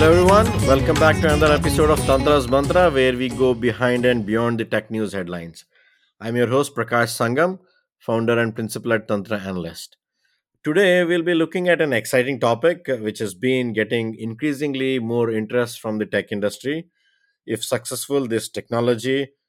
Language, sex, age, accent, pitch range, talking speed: English, male, 50-69, Indian, 110-140 Hz, 165 wpm